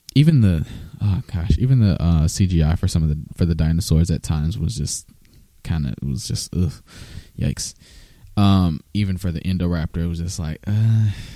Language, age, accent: English, 20-39, American